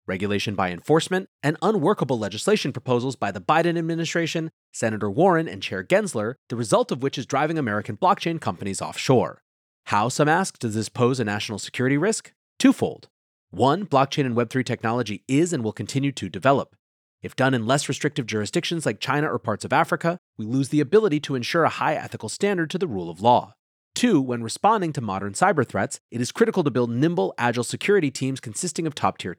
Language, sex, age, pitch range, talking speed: English, male, 30-49, 110-160 Hz, 195 wpm